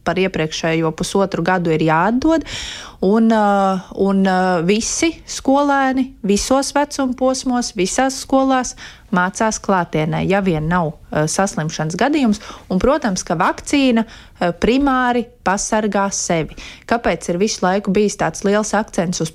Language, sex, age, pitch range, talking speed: Russian, female, 30-49, 180-235 Hz, 120 wpm